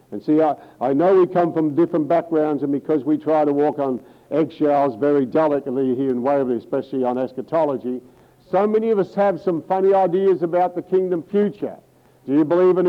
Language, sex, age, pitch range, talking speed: English, male, 60-79, 140-180 Hz, 190 wpm